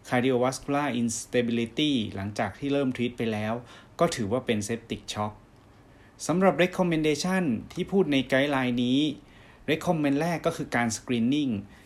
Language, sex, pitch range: Thai, male, 110-140 Hz